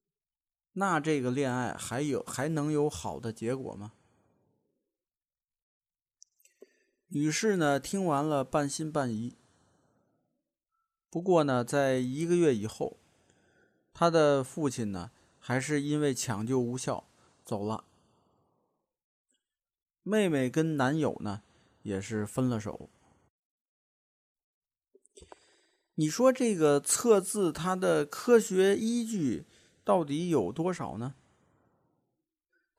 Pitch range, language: 120-175 Hz, Chinese